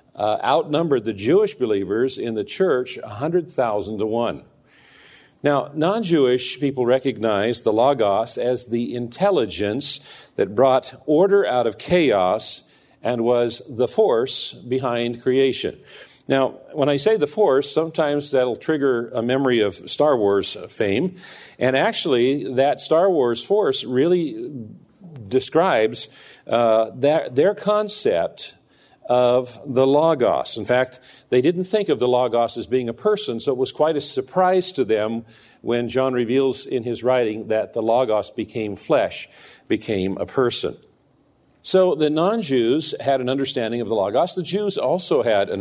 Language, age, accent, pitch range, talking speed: English, 50-69, American, 120-160 Hz, 145 wpm